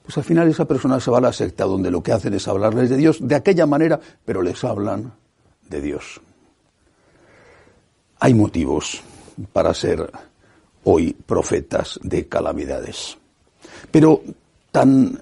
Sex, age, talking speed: male, 60-79, 140 wpm